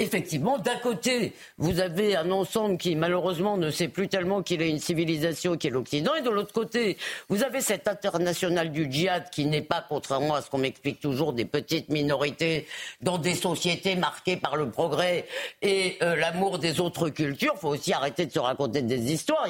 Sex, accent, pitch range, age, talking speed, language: female, French, 150-195 Hz, 50-69, 195 wpm, French